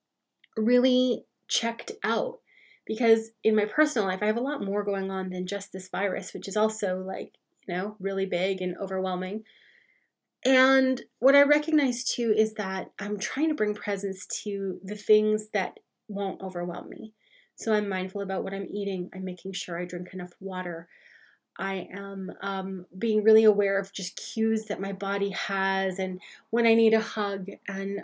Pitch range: 190-225 Hz